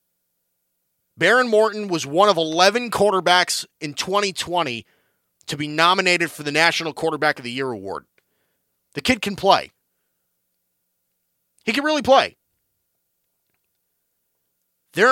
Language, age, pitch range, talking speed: English, 30-49, 180-255 Hz, 115 wpm